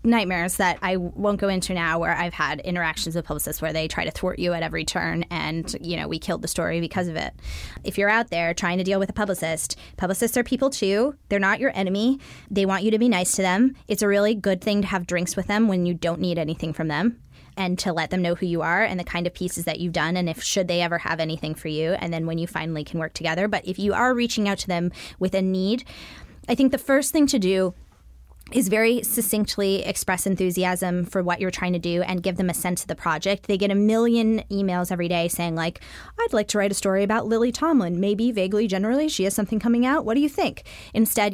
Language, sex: English, female